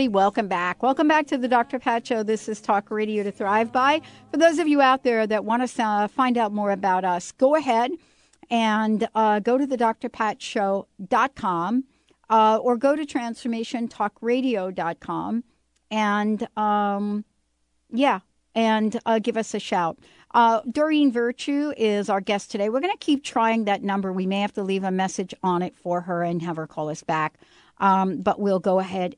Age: 60-79